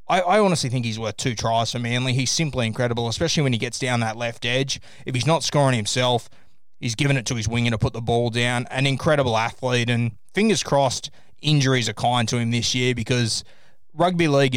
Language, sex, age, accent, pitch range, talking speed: English, male, 20-39, Australian, 115-140 Hz, 215 wpm